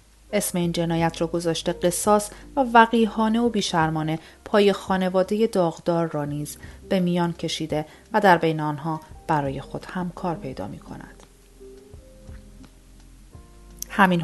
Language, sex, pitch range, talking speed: Persian, female, 160-195 Hz, 120 wpm